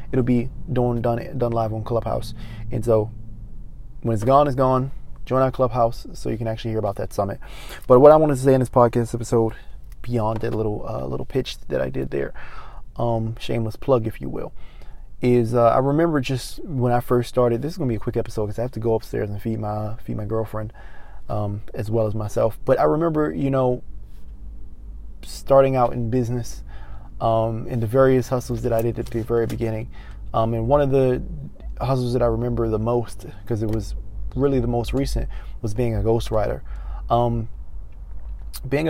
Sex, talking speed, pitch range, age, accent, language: male, 200 wpm, 110-125 Hz, 20-39, American, English